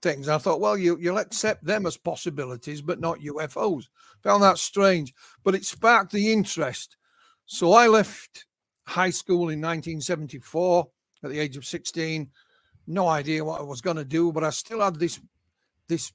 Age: 60-79